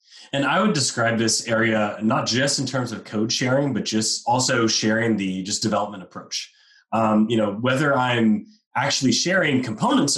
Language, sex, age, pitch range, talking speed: English, male, 30-49, 105-130 Hz, 170 wpm